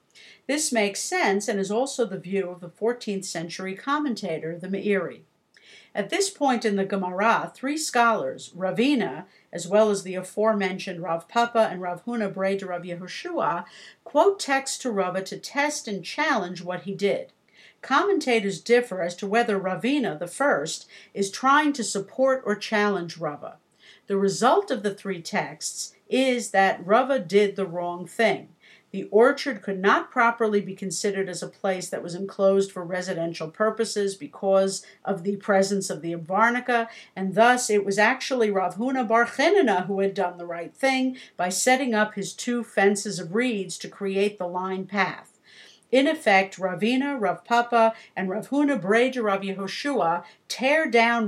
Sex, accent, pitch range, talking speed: female, American, 190-235 Hz, 160 wpm